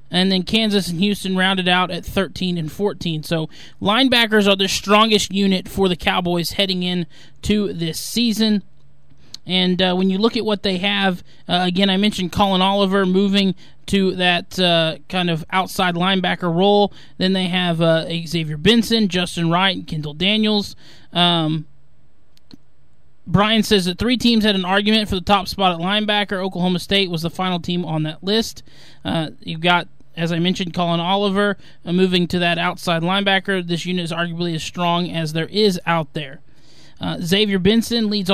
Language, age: English, 20-39